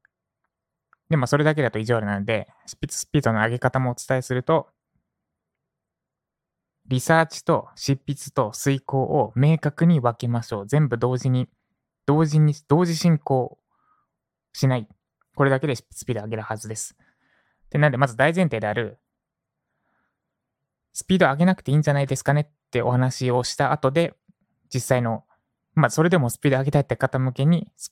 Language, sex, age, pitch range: Japanese, male, 20-39, 120-155 Hz